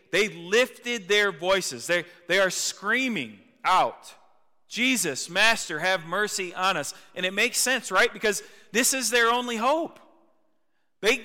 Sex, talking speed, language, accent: male, 145 wpm, English, American